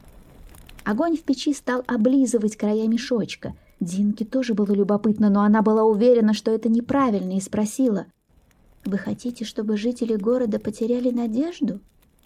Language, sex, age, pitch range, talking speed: Russian, female, 20-39, 200-245 Hz, 130 wpm